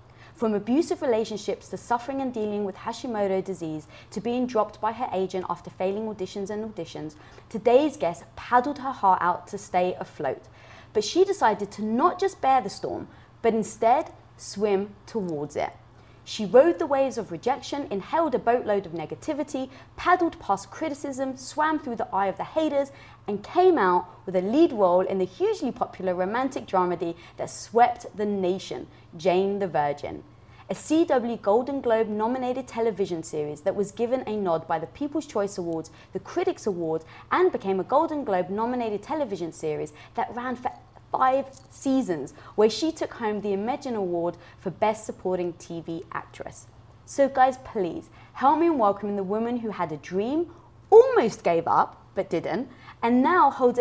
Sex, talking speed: female, 165 wpm